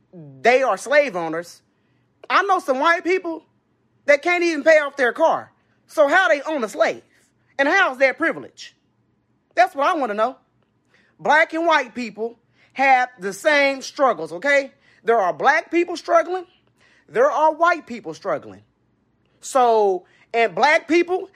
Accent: American